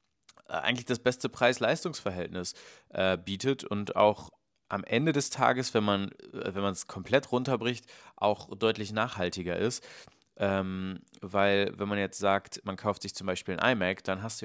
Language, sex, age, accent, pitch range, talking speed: German, male, 30-49, German, 95-125 Hz, 160 wpm